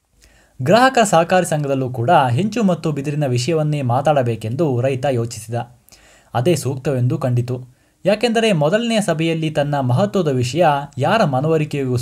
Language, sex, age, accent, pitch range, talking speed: Kannada, male, 20-39, native, 125-175 Hz, 110 wpm